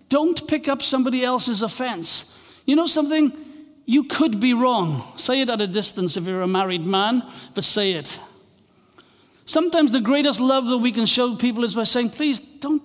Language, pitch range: English, 185-240 Hz